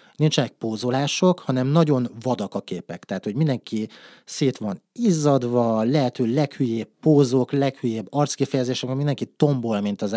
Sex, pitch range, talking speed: male, 110-135 Hz, 130 wpm